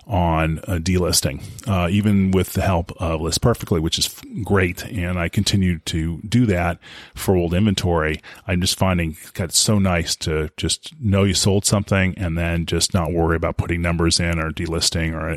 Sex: male